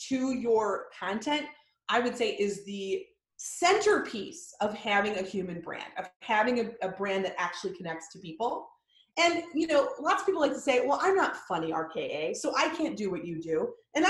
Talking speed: 195 wpm